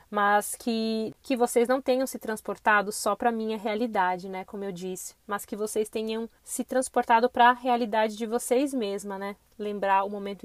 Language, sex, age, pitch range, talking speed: Portuguese, female, 20-39, 200-225 Hz, 190 wpm